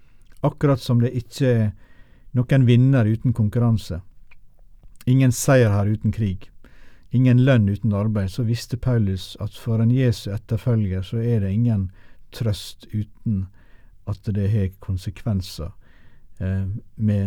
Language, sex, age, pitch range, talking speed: English, male, 60-79, 95-125 Hz, 135 wpm